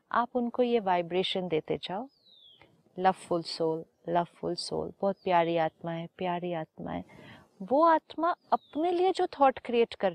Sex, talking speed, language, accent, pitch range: female, 160 wpm, Hindi, native, 190-260 Hz